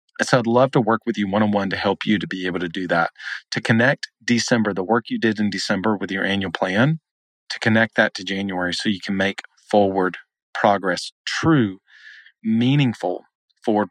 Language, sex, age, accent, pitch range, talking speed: English, male, 40-59, American, 100-115 Hz, 190 wpm